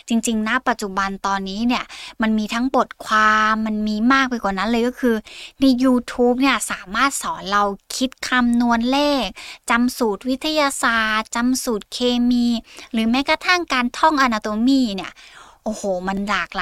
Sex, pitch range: female, 200-255 Hz